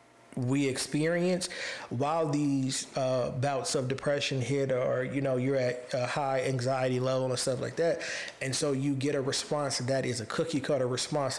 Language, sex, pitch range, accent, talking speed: English, male, 125-145 Hz, American, 180 wpm